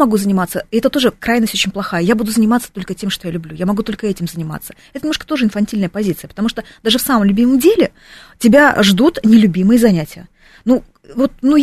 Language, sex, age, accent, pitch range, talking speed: Russian, female, 30-49, native, 185-235 Hz, 205 wpm